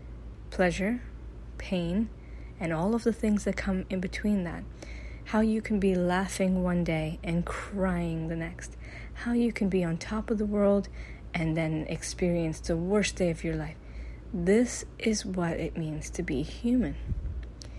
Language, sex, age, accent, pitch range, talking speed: English, female, 30-49, American, 155-195 Hz, 165 wpm